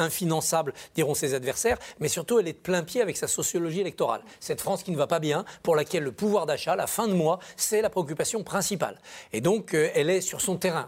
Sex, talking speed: male, 230 wpm